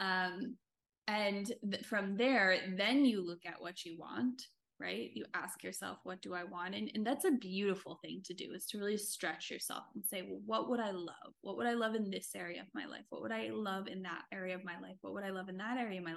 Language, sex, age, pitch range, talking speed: English, female, 10-29, 185-220 Hz, 250 wpm